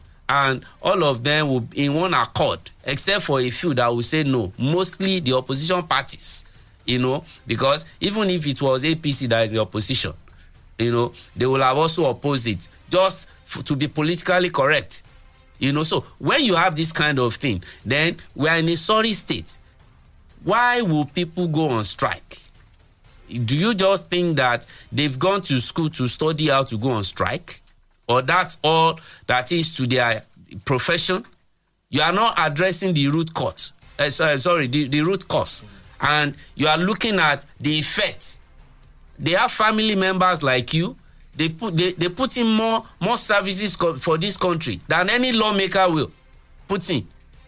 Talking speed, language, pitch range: 175 wpm, English, 125-185 Hz